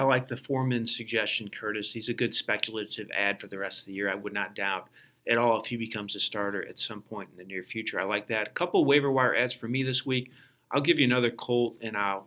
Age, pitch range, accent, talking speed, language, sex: 40-59, 110-135 Hz, American, 270 wpm, English, male